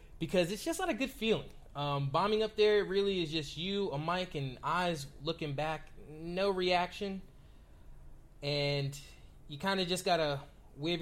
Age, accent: 20-39, American